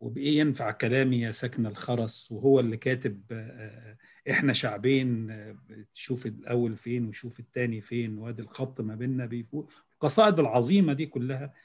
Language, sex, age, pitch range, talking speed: Arabic, male, 40-59, 120-170 Hz, 135 wpm